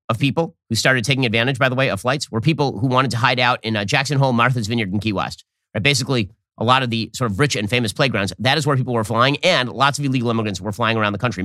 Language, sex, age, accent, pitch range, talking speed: English, male, 30-49, American, 110-145 Hz, 285 wpm